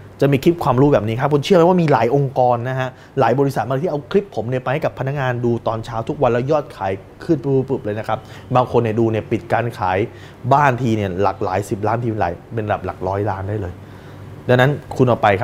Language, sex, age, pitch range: Thai, male, 20-39, 105-135 Hz